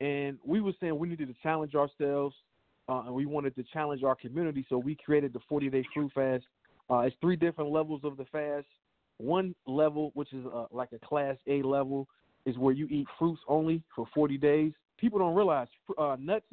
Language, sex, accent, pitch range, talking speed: English, male, American, 130-155 Hz, 205 wpm